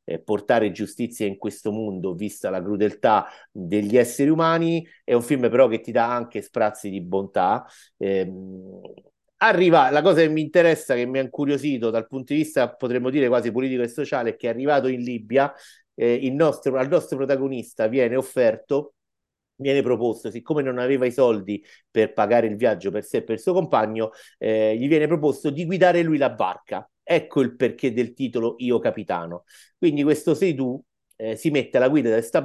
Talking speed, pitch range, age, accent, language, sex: 190 wpm, 110-145 Hz, 50-69, native, Italian, male